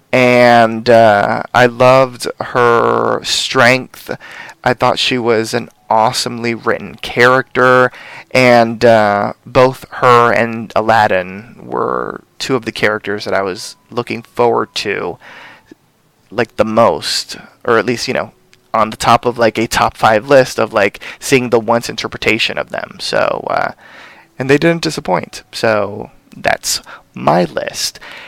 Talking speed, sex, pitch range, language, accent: 140 wpm, male, 115-135 Hz, English, American